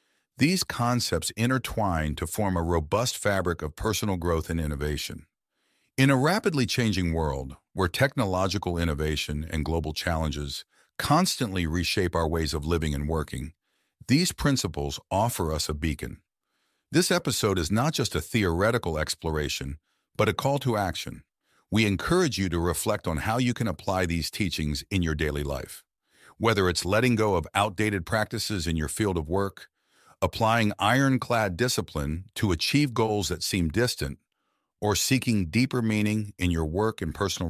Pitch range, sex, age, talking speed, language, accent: 80-110 Hz, male, 50-69, 155 wpm, Italian, American